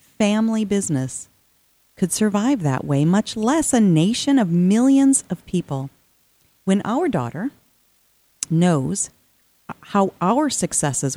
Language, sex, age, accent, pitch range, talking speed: English, female, 40-59, American, 165-220 Hz, 115 wpm